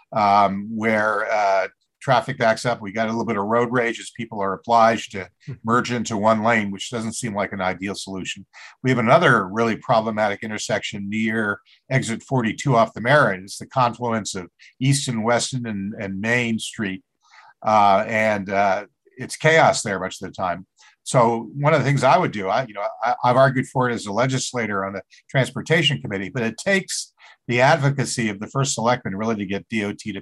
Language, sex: English, male